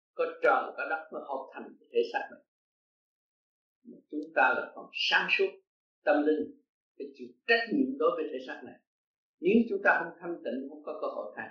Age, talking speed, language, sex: 50-69, 205 wpm, Vietnamese, male